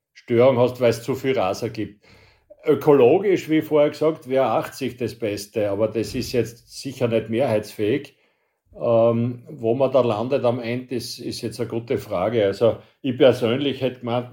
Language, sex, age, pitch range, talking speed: German, male, 60-79, 115-135 Hz, 170 wpm